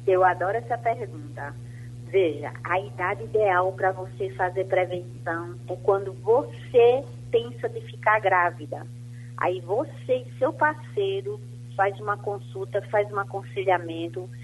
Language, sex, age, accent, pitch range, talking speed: Portuguese, female, 40-59, Brazilian, 120-190 Hz, 125 wpm